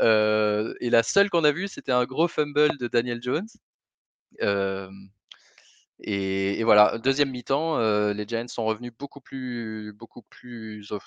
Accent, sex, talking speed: French, male, 155 wpm